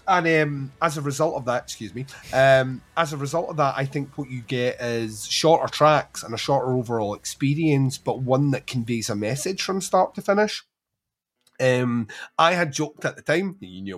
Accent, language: British, English